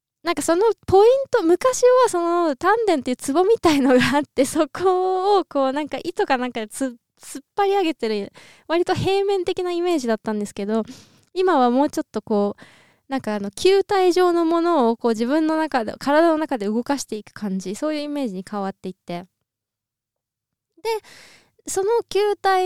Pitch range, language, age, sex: 235-365 Hz, Japanese, 20-39, female